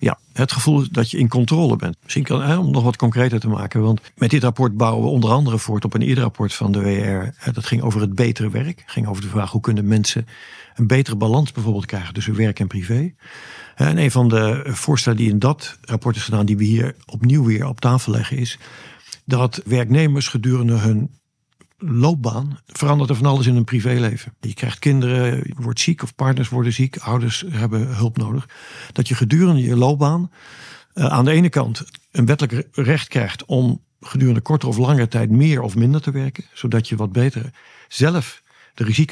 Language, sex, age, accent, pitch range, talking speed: Dutch, male, 50-69, Dutch, 115-135 Hz, 205 wpm